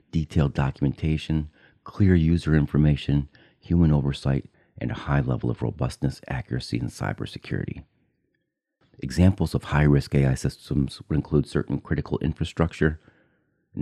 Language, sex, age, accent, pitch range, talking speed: English, male, 40-59, American, 70-80 Hz, 115 wpm